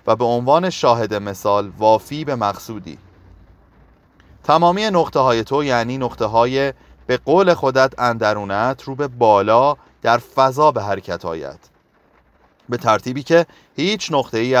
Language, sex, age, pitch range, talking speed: Persian, male, 30-49, 105-145 Hz, 135 wpm